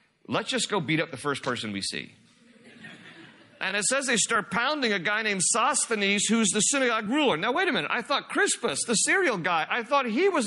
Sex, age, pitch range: male, 40-59, 170-225 Hz